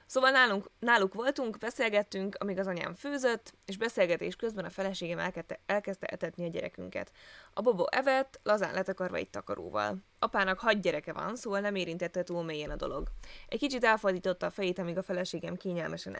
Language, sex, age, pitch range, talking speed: Hungarian, female, 20-39, 180-225 Hz, 170 wpm